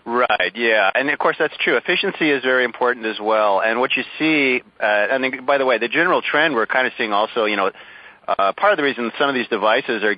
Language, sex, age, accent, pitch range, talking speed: English, male, 40-59, American, 110-135 Hz, 255 wpm